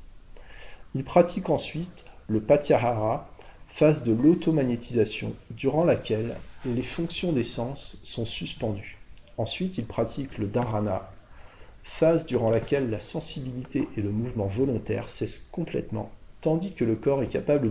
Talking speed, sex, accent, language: 130 wpm, male, French, French